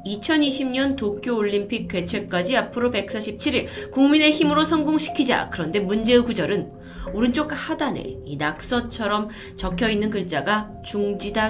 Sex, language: female, Korean